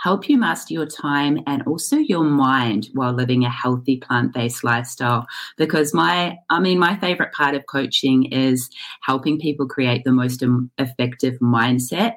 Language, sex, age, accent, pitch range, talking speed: English, female, 30-49, Australian, 125-160 Hz, 160 wpm